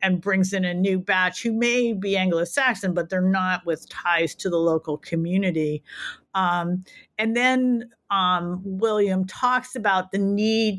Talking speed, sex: 155 wpm, female